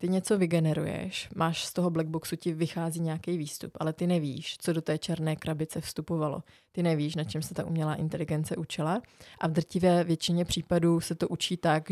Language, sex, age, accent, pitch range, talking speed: Czech, female, 20-39, native, 160-180 Hz, 190 wpm